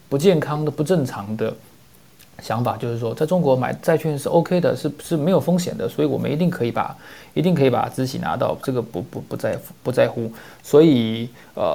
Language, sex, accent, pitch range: Chinese, male, native, 115-155 Hz